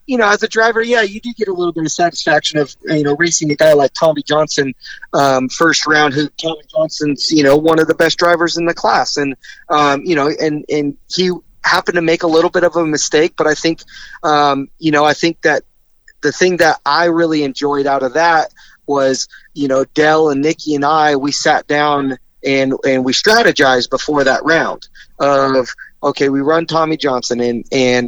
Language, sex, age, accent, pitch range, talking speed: English, male, 30-49, American, 135-165 Hz, 215 wpm